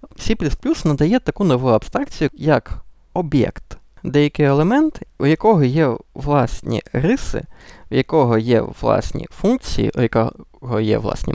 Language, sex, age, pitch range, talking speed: Ukrainian, male, 20-39, 125-195 Hz, 120 wpm